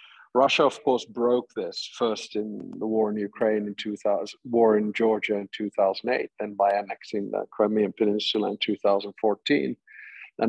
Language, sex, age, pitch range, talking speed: English, male, 50-69, 105-115 Hz, 150 wpm